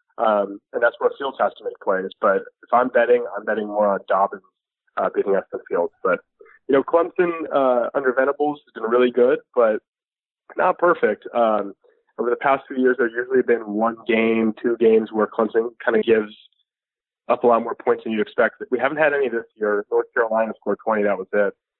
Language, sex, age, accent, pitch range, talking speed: English, male, 30-49, American, 110-180 Hz, 210 wpm